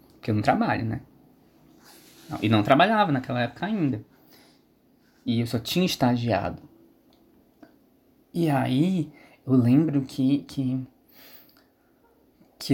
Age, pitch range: 20-39, 130-160 Hz